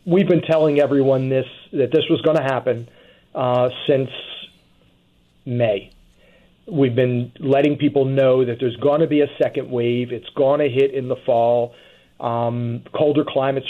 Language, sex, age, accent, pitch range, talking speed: English, male, 40-59, American, 125-145 Hz, 160 wpm